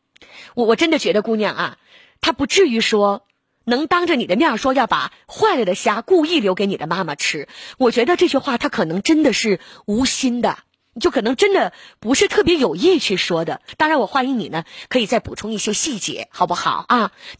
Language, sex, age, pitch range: Chinese, female, 20-39, 220-310 Hz